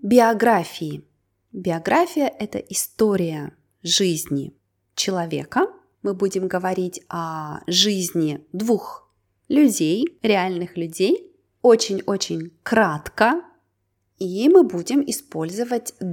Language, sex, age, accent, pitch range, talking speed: Russian, female, 20-39, native, 170-225 Hz, 80 wpm